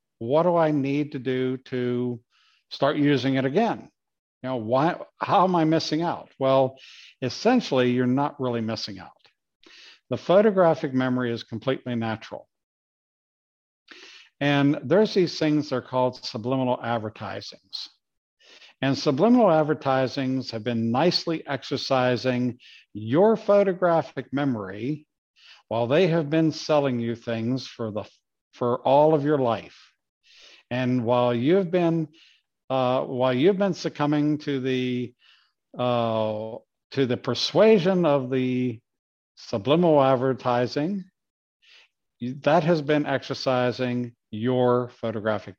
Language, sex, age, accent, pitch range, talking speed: English, male, 50-69, American, 120-150 Hz, 120 wpm